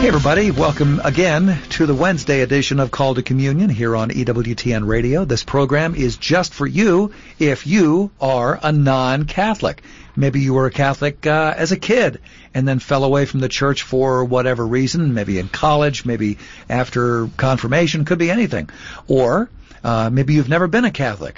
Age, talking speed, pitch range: 50-69, 175 wpm, 120-155 Hz